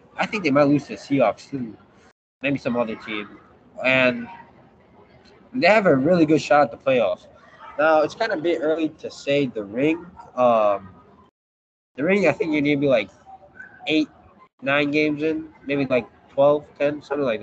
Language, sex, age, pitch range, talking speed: English, male, 20-39, 140-185 Hz, 185 wpm